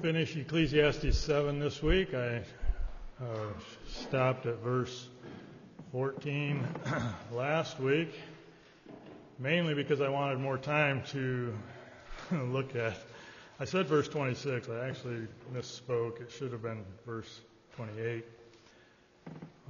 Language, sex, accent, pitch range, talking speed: English, male, American, 120-150 Hz, 105 wpm